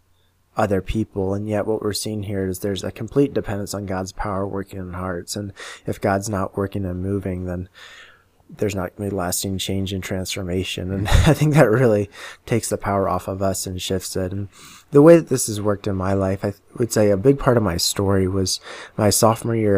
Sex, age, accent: male, 20-39, American